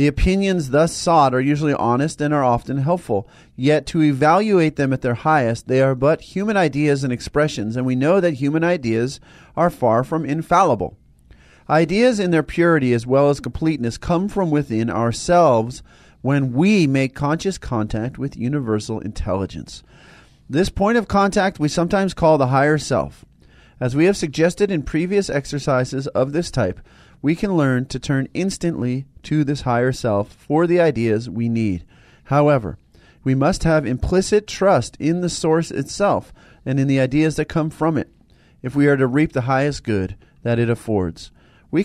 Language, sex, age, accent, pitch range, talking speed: English, male, 40-59, American, 125-165 Hz, 170 wpm